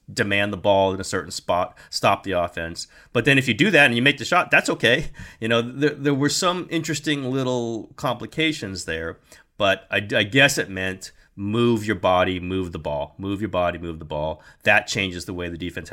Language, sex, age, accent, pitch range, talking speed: English, male, 30-49, American, 100-160 Hz, 215 wpm